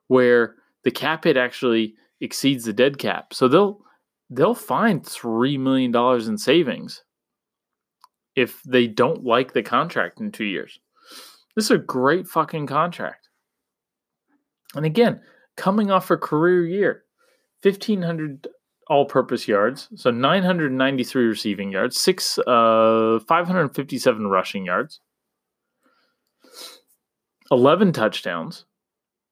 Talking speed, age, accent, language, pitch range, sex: 120 wpm, 30-49, American, English, 125-195 Hz, male